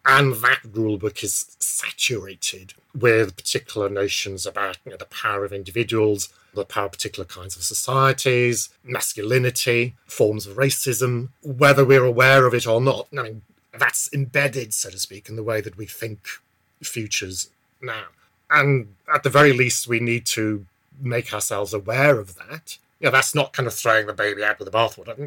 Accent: British